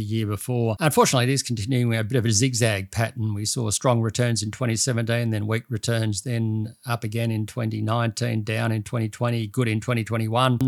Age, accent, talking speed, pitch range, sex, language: 50-69, Australian, 190 wpm, 115-135 Hz, male, English